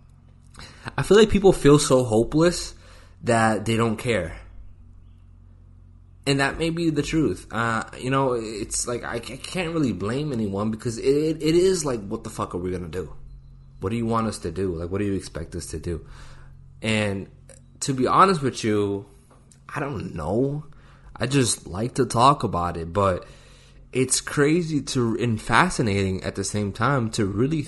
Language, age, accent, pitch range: English, 20-39, American, 95-135 Hz